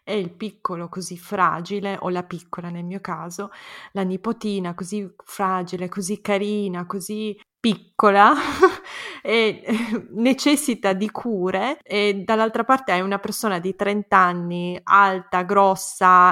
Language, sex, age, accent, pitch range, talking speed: Italian, female, 20-39, native, 180-215 Hz, 130 wpm